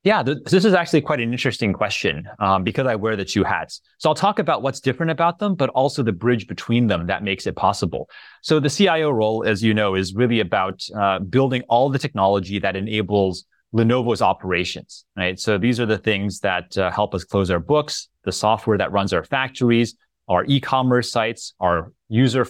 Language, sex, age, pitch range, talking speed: English, male, 30-49, 100-130 Hz, 205 wpm